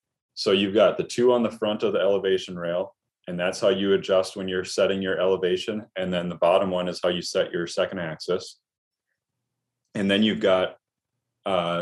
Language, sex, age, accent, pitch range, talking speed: English, male, 30-49, American, 90-105 Hz, 200 wpm